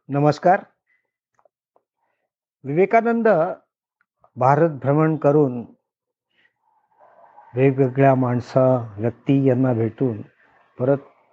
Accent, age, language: native, 50-69, Marathi